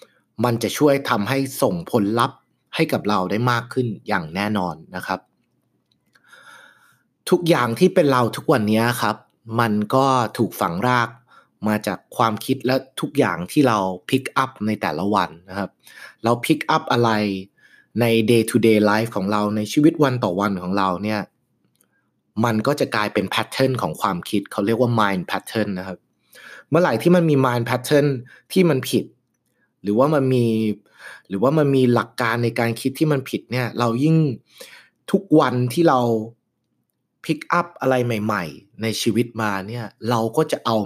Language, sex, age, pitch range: Thai, male, 20-39, 105-135 Hz